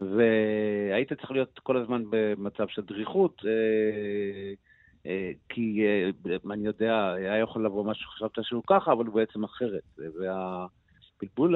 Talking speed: 120 wpm